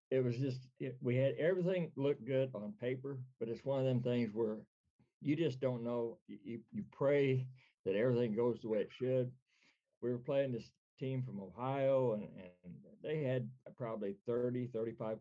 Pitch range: 105-125 Hz